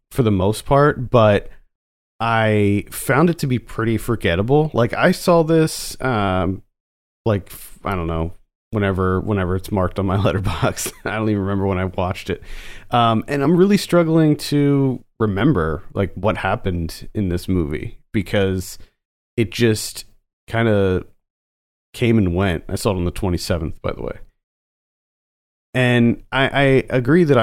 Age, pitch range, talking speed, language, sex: 30-49, 95-120 Hz, 155 wpm, English, male